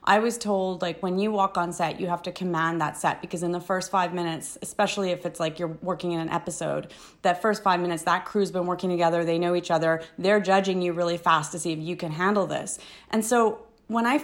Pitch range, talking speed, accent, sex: 175-220 Hz, 250 wpm, American, female